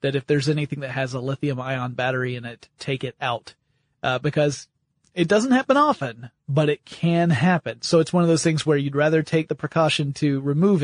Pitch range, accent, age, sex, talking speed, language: 135-165 Hz, American, 30-49, male, 210 wpm, English